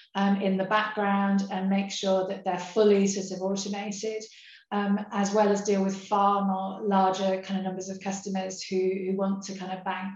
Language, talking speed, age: English, 200 wpm, 30-49